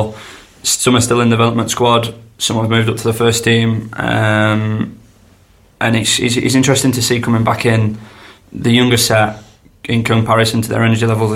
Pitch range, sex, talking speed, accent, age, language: 110-115 Hz, male, 185 wpm, British, 20-39, English